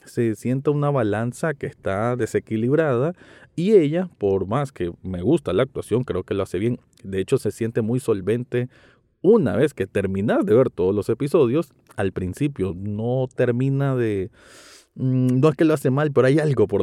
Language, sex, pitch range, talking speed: Spanish, male, 100-135 Hz, 180 wpm